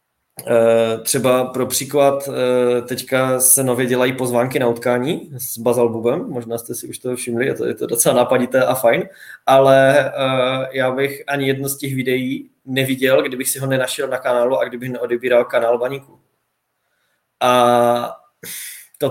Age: 20-39